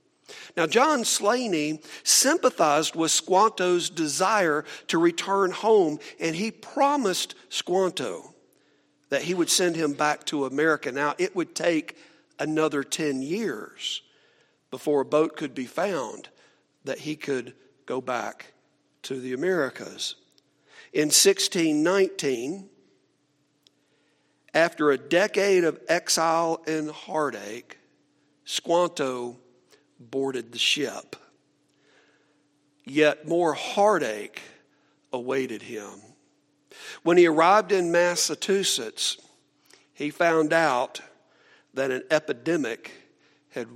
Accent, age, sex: American, 50-69, male